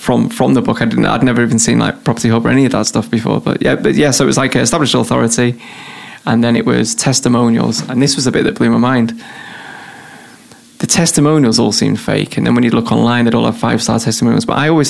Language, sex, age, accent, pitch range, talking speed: English, male, 20-39, British, 115-125 Hz, 255 wpm